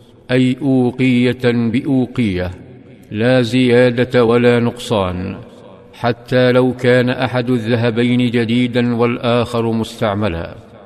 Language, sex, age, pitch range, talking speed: Arabic, male, 50-69, 120-130 Hz, 85 wpm